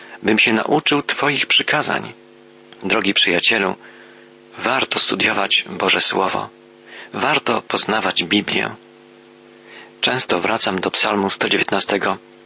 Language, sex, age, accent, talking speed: Polish, male, 40-59, native, 90 wpm